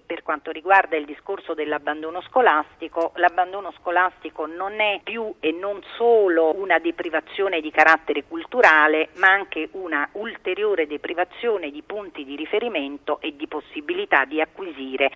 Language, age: Italian, 40-59